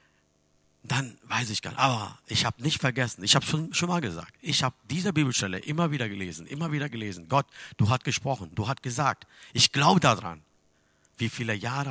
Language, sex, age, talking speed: German, male, 50-69, 195 wpm